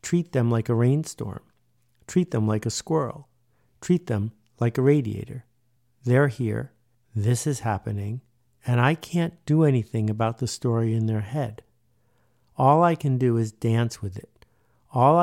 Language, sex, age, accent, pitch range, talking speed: English, male, 50-69, American, 115-130 Hz, 160 wpm